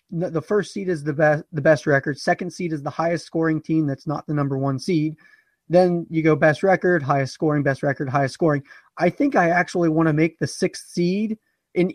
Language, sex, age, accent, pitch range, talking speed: English, male, 30-49, American, 155-180 Hz, 220 wpm